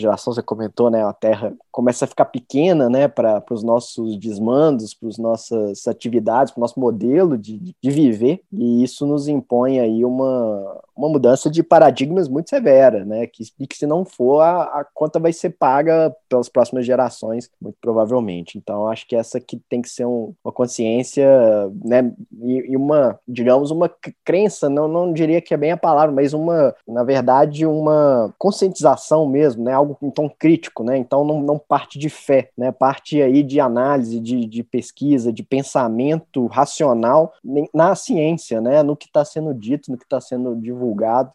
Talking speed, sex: 175 wpm, male